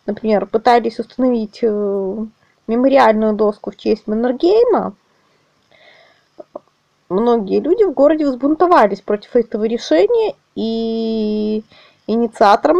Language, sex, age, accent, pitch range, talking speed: Russian, female, 20-39, native, 225-335 Hz, 85 wpm